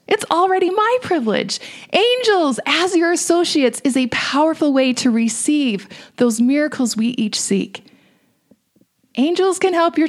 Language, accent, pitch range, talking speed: English, American, 220-280 Hz, 135 wpm